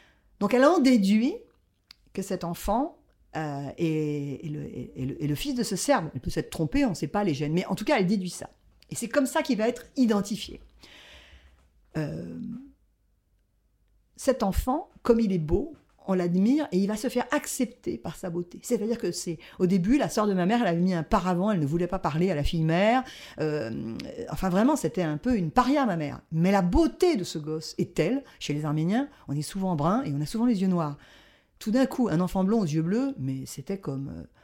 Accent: French